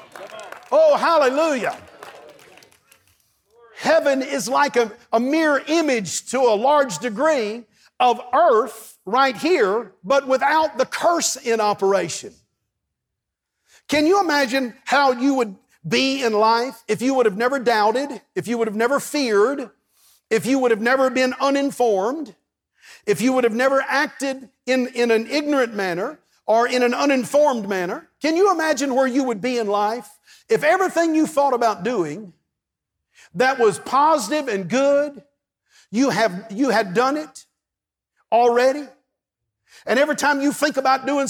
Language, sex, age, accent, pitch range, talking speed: English, male, 50-69, American, 225-280 Hz, 150 wpm